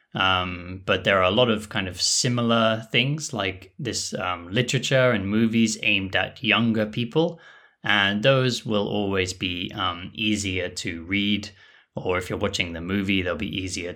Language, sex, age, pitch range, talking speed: English, male, 20-39, 95-110 Hz, 170 wpm